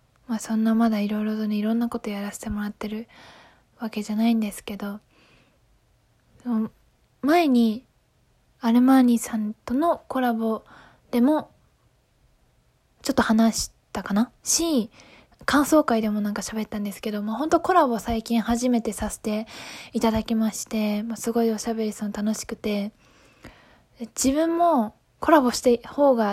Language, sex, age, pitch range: Japanese, female, 20-39, 215-250 Hz